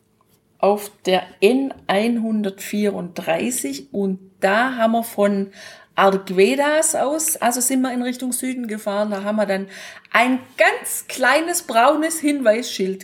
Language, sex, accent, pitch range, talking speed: German, female, German, 195-270 Hz, 120 wpm